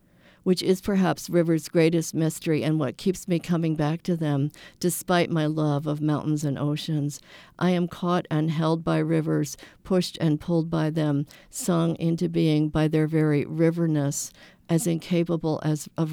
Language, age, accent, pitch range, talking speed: English, 50-69, American, 150-165 Hz, 165 wpm